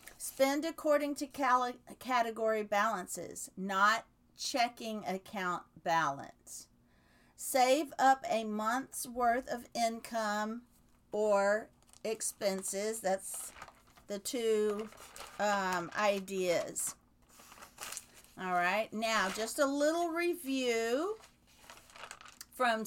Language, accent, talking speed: English, American, 80 wpm